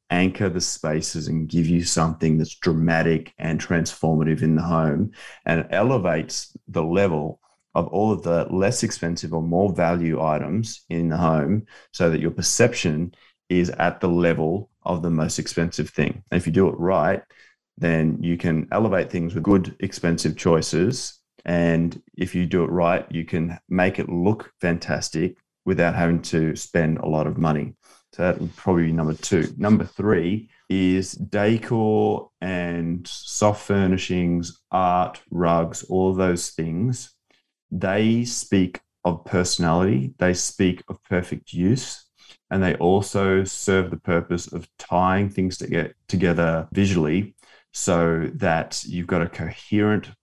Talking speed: 150 wpm